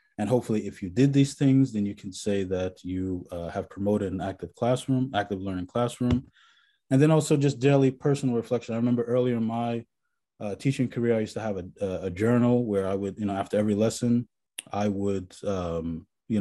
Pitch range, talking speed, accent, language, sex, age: 100-125 Hz, 205 wpm, American, English, male, 20-39